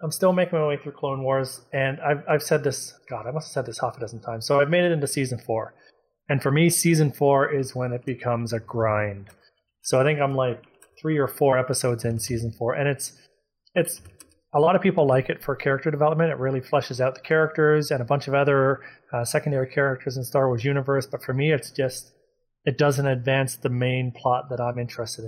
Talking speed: 230 wpm